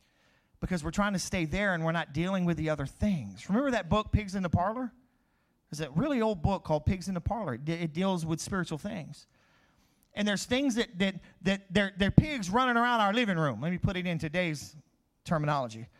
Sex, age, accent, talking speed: male, 40-59, American, 215 wpm